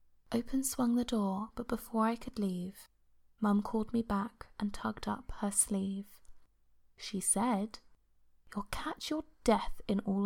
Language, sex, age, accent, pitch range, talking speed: English, female, 20-39, British, 200-240 Hz, 150 wpm